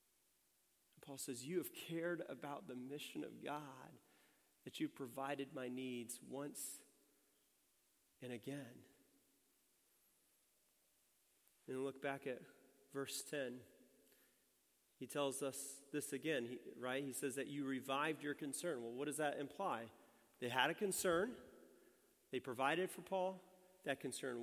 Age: 40-59